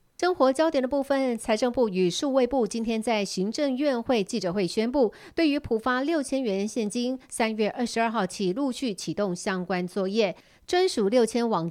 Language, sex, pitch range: Chinese, female, 190-255 Hz